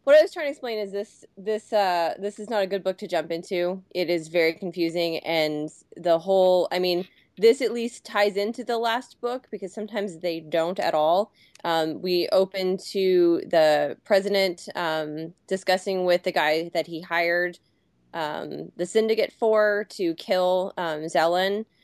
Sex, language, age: female, English, 20-39